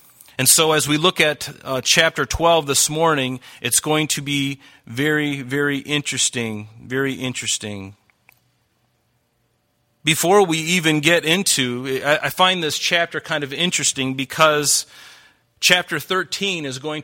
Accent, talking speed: American, 135 wpm